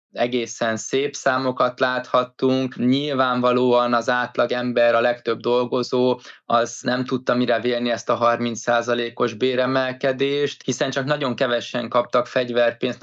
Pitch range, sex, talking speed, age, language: 120-130 Hz, male, 120 wpm, 20-39, Hungarian